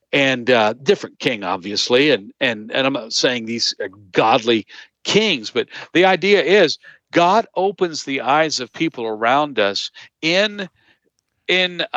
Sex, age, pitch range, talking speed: male, 50-69, 125-175 Hz, 145 wpm